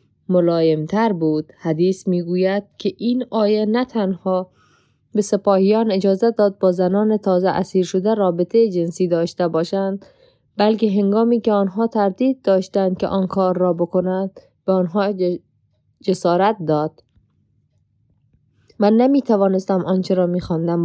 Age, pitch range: 20-39, 175-215 Hz